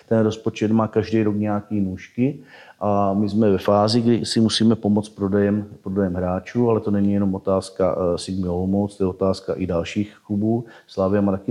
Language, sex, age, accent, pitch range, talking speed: Czech, male, 40-59, native, 90-105 Hz, 180 wpm